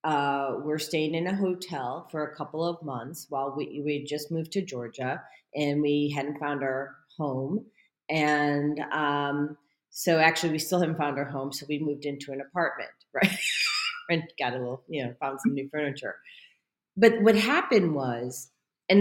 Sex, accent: female, American